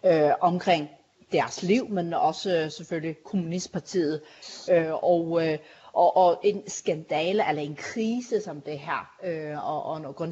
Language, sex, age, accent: Danish, female, 40-59, native